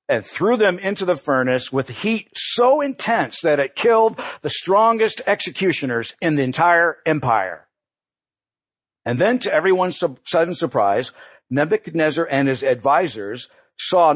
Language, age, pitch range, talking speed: English, 60-79, 140-225 Hz, 130 wpm